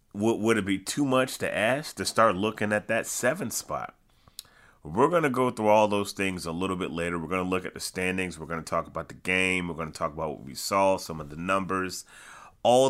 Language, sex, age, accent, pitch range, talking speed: English, male, 30-49, American, 85-105 Hz, 245 wpm